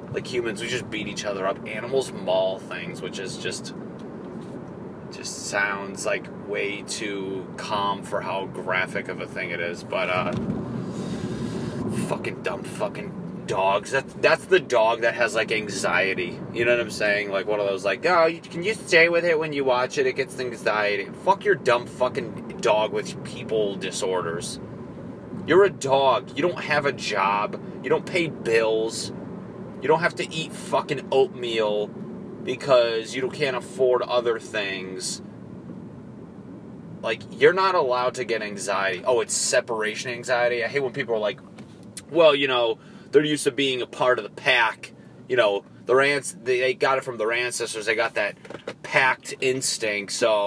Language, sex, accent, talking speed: English, male, American, 170 wpm